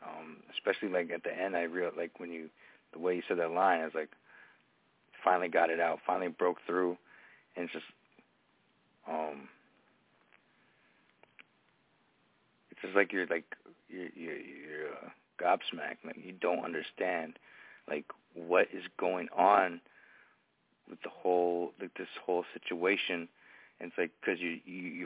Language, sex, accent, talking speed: English, male, American, 150 wpm